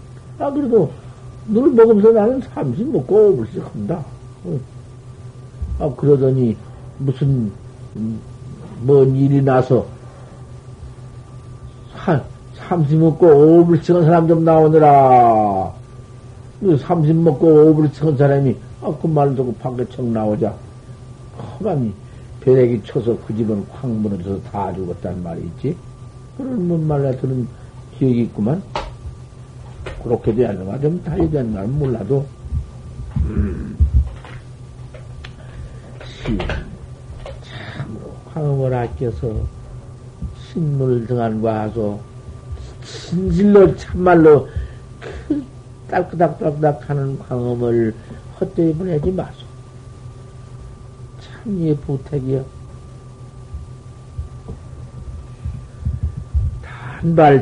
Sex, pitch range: male, 120-150 Hz